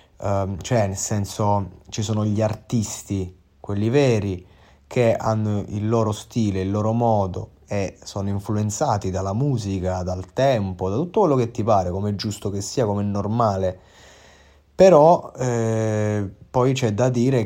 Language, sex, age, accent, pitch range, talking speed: Italian, male, 30-49, native, 95-115 Hz, 155 wpm